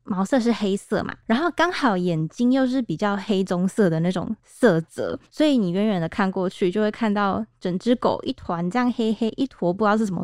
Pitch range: 190-255 Hz